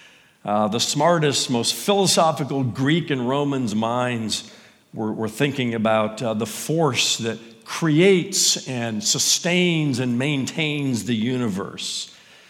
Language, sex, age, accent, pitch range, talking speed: English, male, 50-69, American, 140-210 Hz, 115 wpm